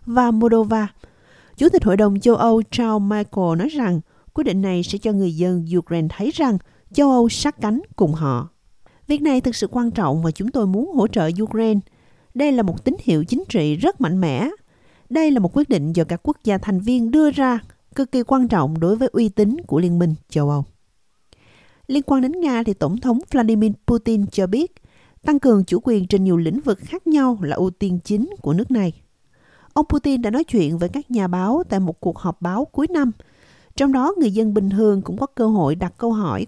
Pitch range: 180-260 Hz